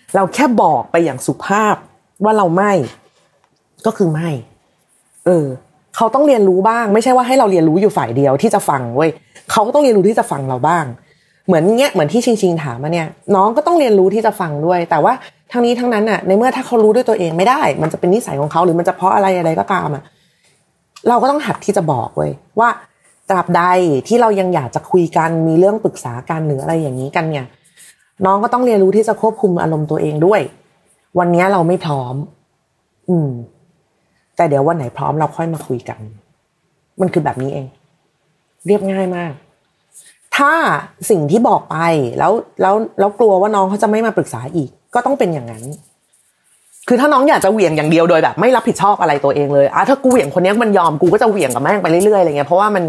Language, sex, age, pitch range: Thai, female, 30-49, 150-205 Hz